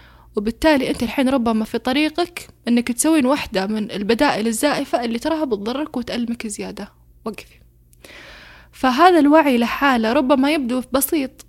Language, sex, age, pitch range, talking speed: Arabic, female, 10-29, 215-290 Hz, 125 wpm